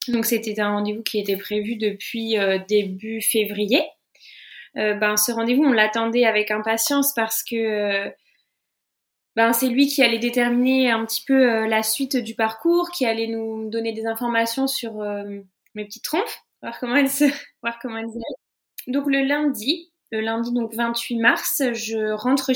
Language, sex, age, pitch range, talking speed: French, female, 20-39, 225-285 Hz, 165 wpm